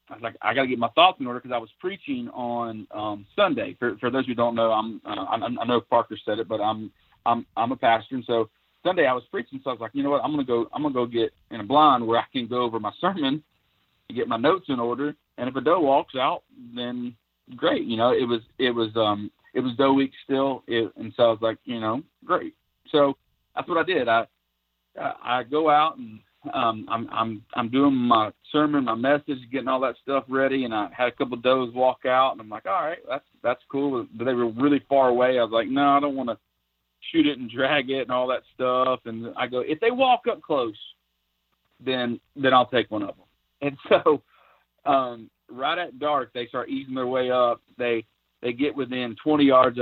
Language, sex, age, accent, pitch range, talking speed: English, male, 40-59, American, 115-135 Hz, 235 wpm